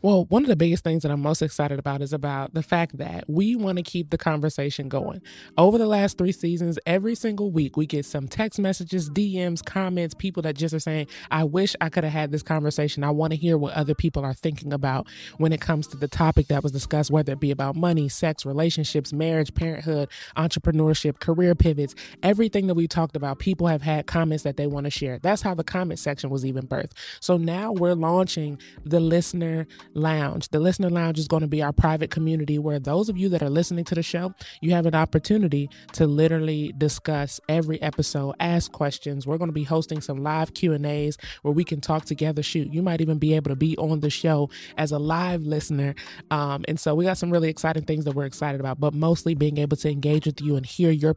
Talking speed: 230 wpm